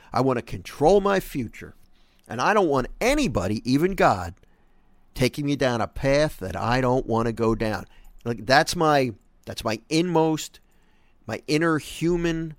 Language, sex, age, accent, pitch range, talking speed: English, male, 50-69, American, 110-155 Hz, 160 wpm